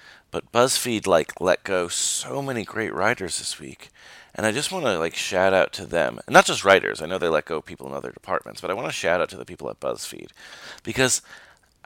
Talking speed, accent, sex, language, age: 240 wpm, American, male, English, 30-49